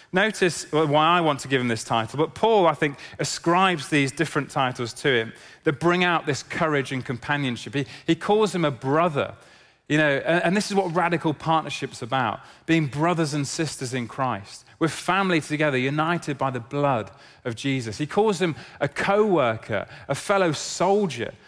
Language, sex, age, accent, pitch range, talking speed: English, male, 30-49, British, 140-175 Hz, 180 wpm